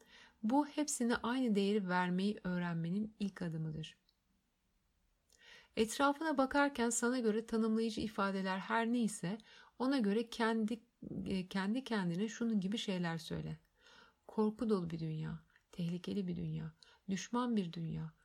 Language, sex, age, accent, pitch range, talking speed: Turkish, female, 60-79, native, 175-225 Hz, 115 wpm